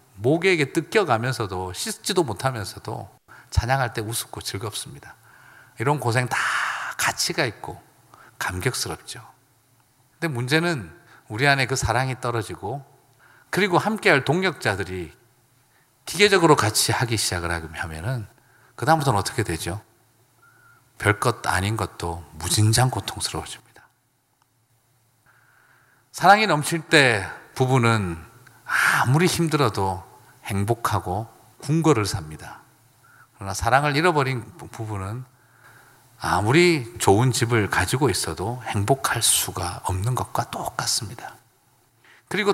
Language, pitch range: Korean, 110-145 Hz